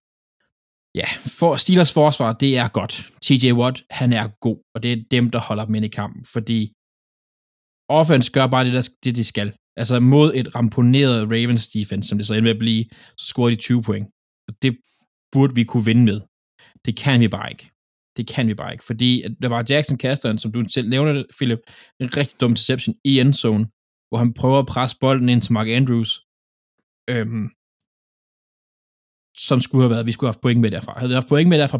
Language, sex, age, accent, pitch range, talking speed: Danish, male, 20-39, native, 110-130 Hz, 210 wpm